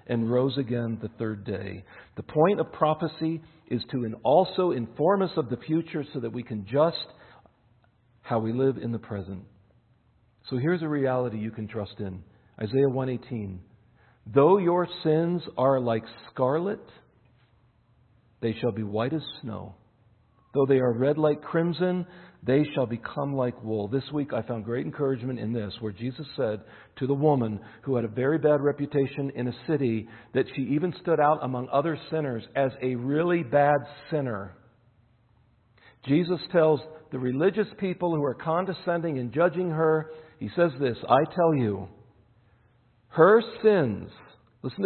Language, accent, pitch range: English, American, 115-155 Hz